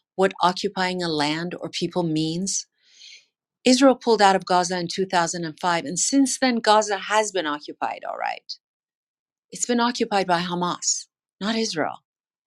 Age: 40-59